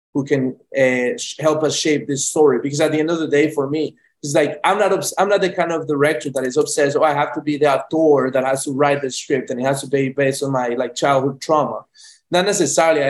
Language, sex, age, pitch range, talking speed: English, male, 20-39, 135-155 Hz, 265 wpm